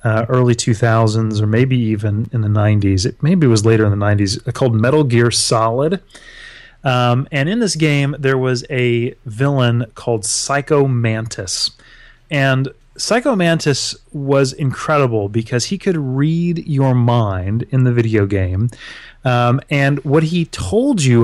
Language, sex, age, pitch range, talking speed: English, male, 30-49, 115-155 Hz, 145 wpm